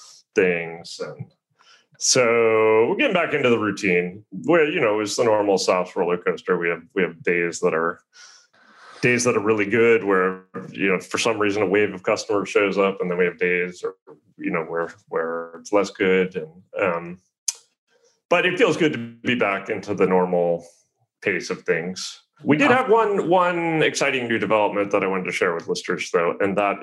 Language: English